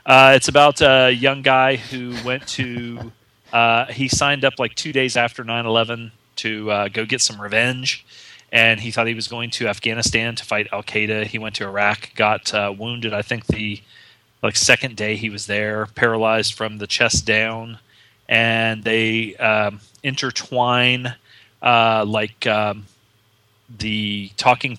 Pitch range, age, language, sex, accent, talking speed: 105-120 Hz, 30-49, English, male, American, 160 wpm